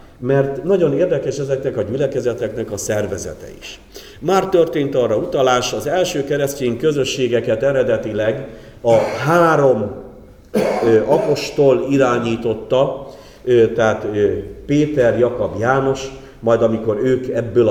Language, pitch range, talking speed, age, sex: Hungarian, 105-135 Hz, 100 wpm, 50-69, male